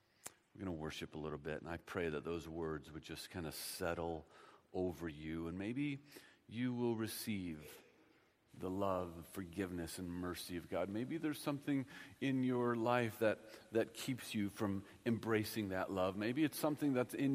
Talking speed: 180 wpm